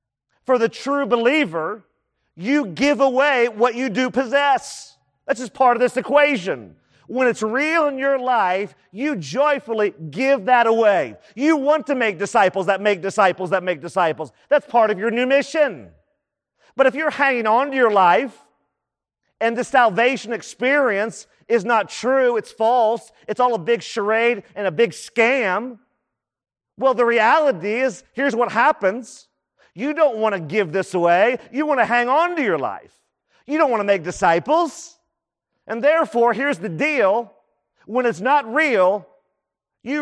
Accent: American